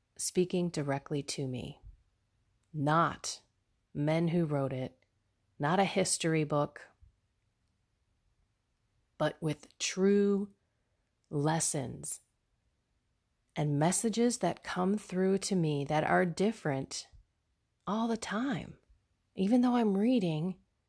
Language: English